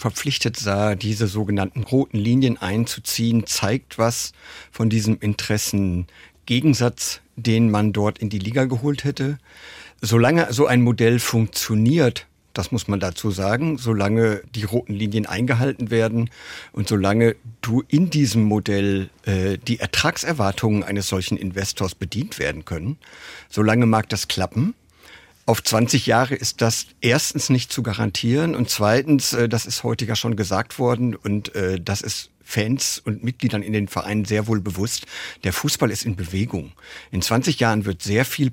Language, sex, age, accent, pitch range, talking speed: German, male, 50-69, German, 100-120 Hz, 150 wpm